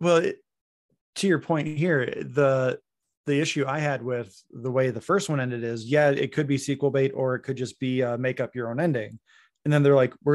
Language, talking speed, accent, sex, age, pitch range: English, 240 wpm, American, male, 30-49, 120-140 Hz